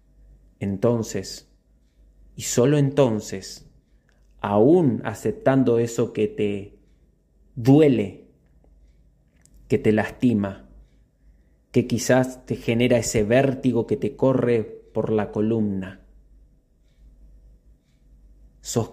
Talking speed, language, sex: 80 wpm, Spanish, male